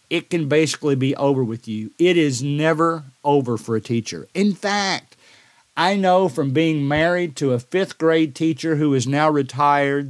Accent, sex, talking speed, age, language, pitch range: American, male, 180 wpm, 50-69, English, 140-180 Hz